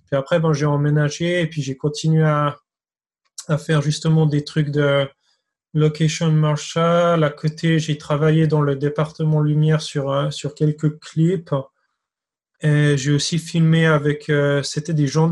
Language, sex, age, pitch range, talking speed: French, male, 20-39, 145-160 Hz, 150 wpm